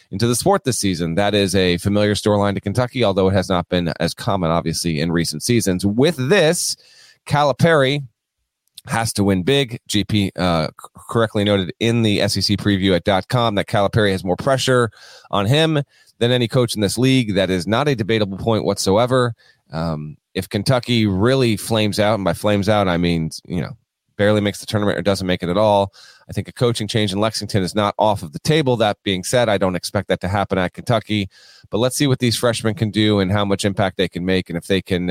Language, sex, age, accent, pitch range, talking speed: English, male, 30-49, American, 95-115 Hz, 215 wpm